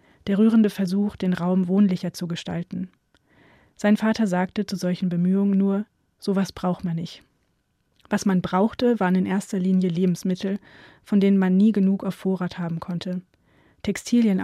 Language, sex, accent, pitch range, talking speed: German, female, German, 180-200 Hz, 155 wpm